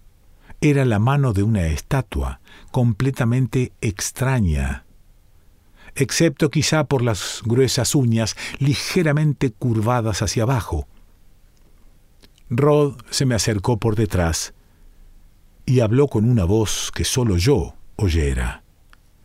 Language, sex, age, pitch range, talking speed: Spanish, male, 50-69, 90-130 Hz, 105 wpm